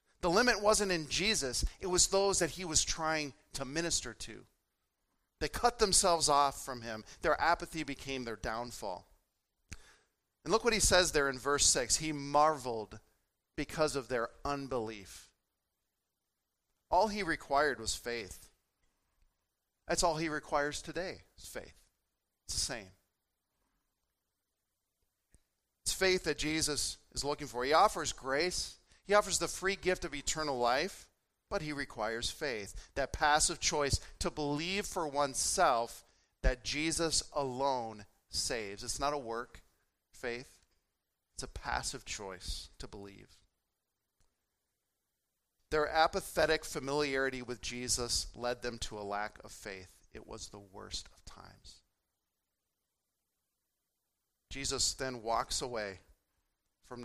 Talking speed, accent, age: 130 wpm, American, 40-59